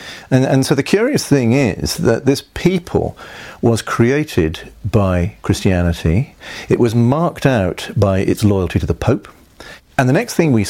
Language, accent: English, British